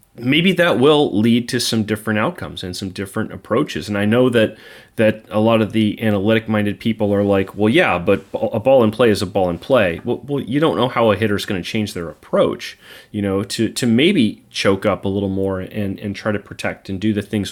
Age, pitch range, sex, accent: 30-49, 100-125 Hz, male, American